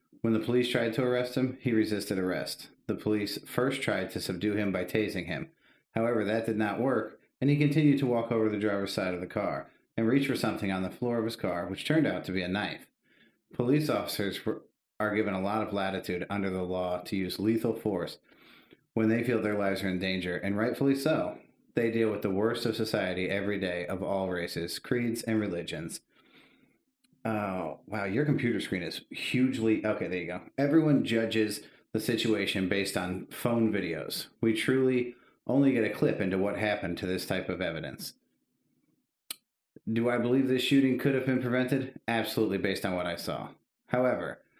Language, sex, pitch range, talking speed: English, male, 100-120 Hz, 195 wpm